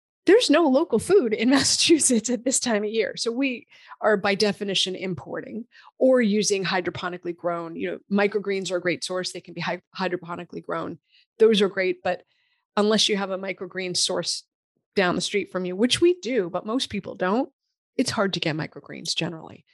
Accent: American